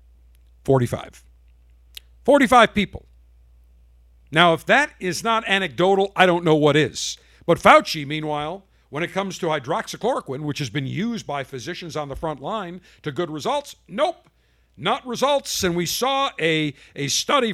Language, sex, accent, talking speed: English, male, American, 150 wpm